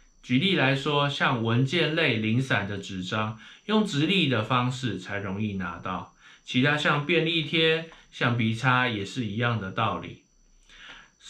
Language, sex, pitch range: Chinese, male, 110-160 Hz